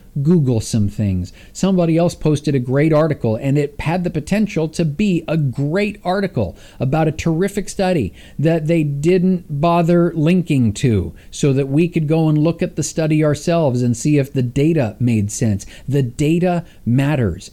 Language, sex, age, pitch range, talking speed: English, male, 50-69, 110-150 Hz, 170 wpm